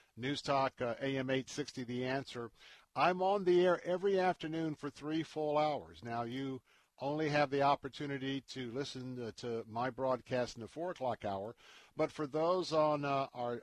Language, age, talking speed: English, 50-69, 175 wpm